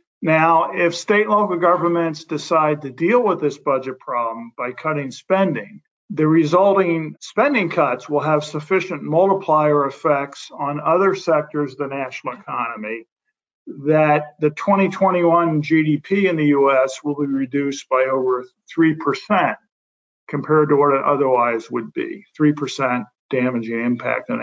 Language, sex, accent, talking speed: English, male, American, 140 wpm